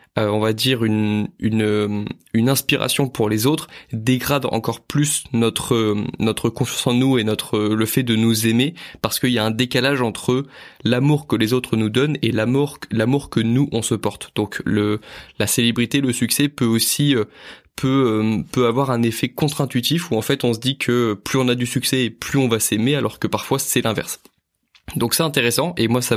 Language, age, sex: French, 20-39, male